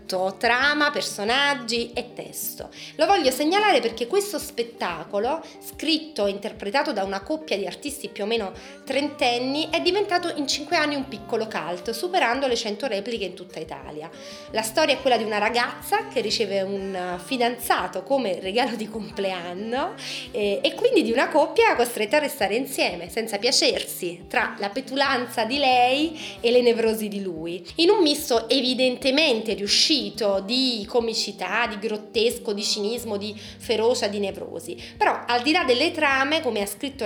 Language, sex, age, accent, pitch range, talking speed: Italian, female, 30-49, native, 210-280 Hz, 155 wpm